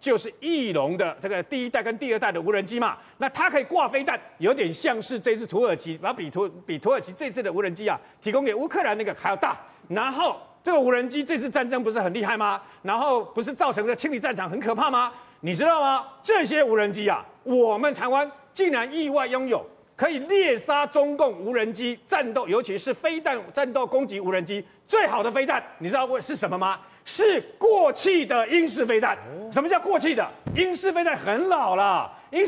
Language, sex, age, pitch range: Chinese, male, 40-59, 230-320 Hz